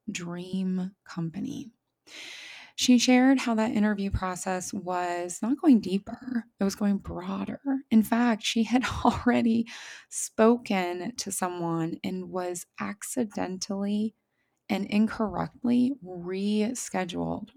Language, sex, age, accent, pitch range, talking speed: English, female, 20-39, American, 180-240 Hz, 100 wpm